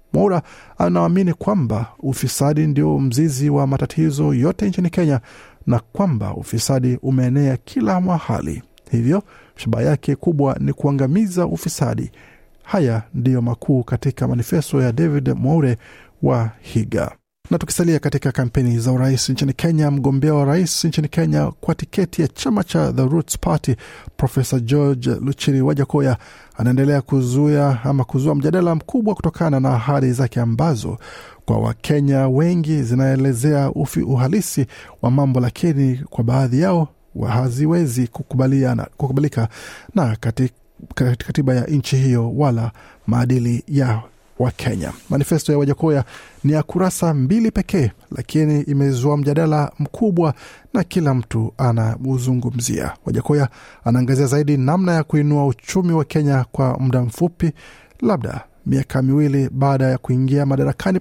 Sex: male